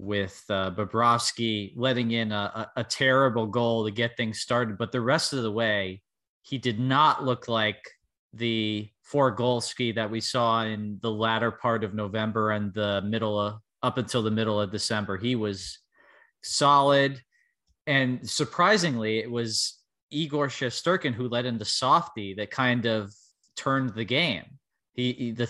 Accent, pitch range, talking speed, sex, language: American, 110-130 Hz, 160 wpm, male, English